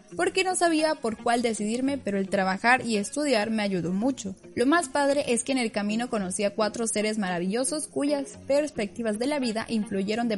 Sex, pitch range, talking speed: female, 200-255 Hz, 195 wpm